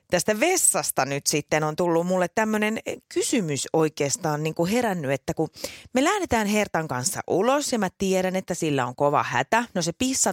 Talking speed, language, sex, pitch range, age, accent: 170 wpm, Finnish, female, 160-255 Hz, 30-49, native